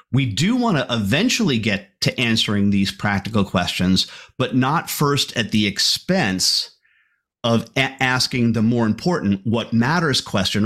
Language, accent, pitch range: English, American, 115-145 Hz